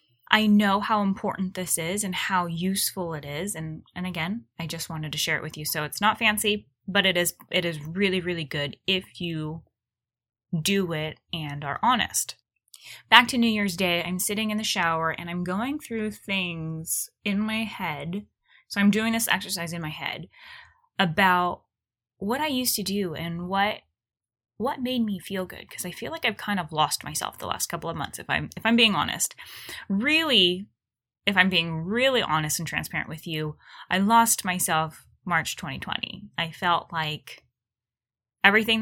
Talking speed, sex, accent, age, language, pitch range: 185 wpm, female, American, 10-29, English, 160-205 Hz